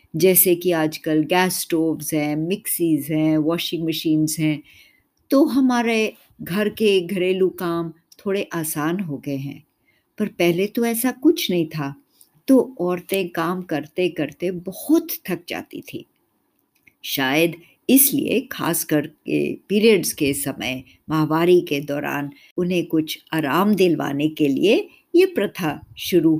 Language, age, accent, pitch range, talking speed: Hindi, 50-69, native, 160-255 Hz, 130 wpm